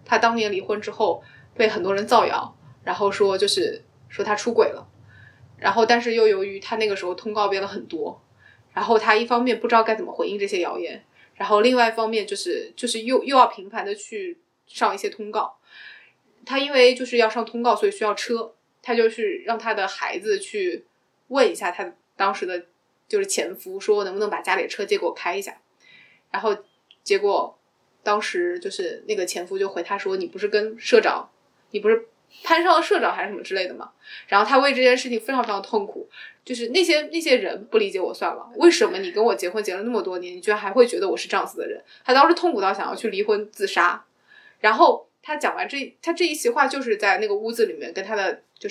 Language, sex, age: Chinese, female, 20-39